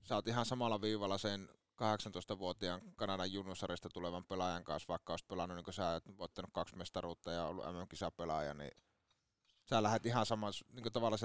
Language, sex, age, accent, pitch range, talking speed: Finnish, male, 30-49, native, 90-110 Hz, 170 wpm